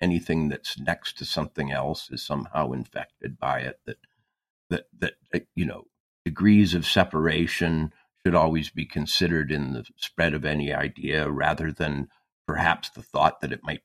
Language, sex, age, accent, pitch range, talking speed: English, male, 50-69, American, 80-110 Hz, 160 wpm